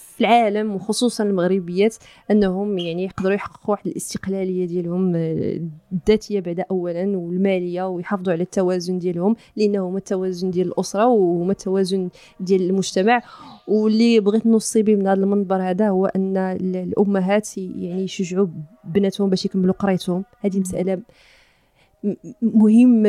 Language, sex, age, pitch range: Arabic, female, 20-39, 185-215 Hz